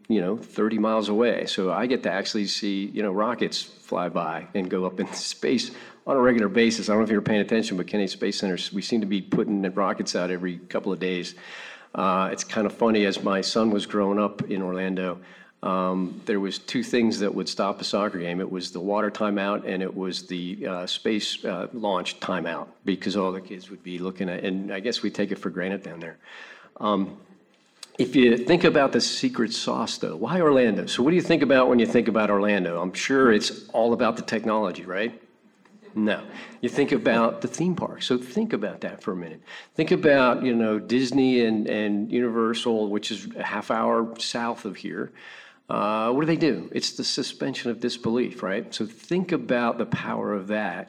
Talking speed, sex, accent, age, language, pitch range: 215 wpm, male, American, 50-69, English, 95-120 Hz